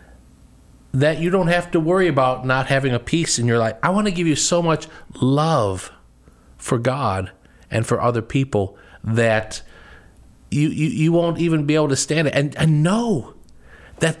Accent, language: American, English